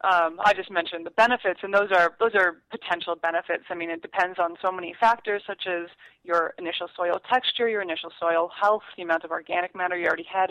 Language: English